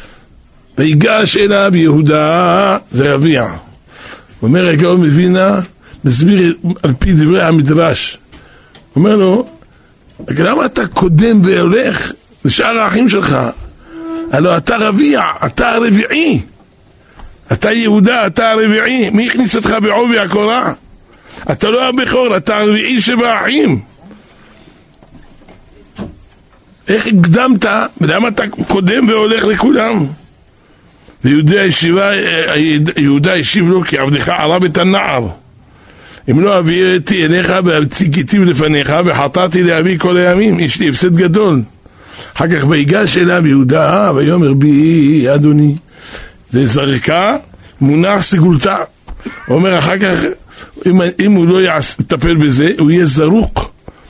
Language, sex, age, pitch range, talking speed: Hebrew, male, 60-79, 150-205 Hz, 110 wpm